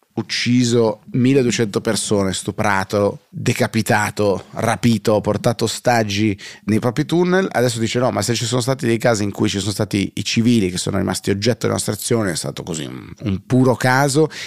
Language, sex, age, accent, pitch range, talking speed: Italian, male, 30-49, native, 95-120 Hz, 170 wpm